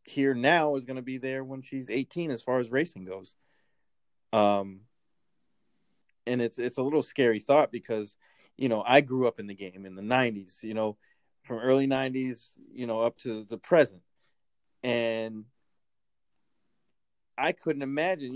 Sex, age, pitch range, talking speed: male, 30-49, 110-135 Hz, 165 wpm